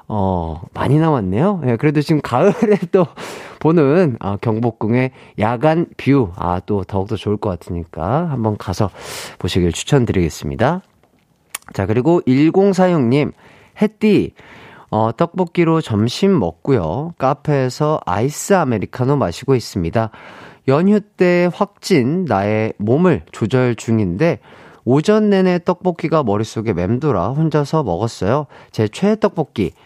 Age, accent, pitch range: 40-59, native, 105-165 Hz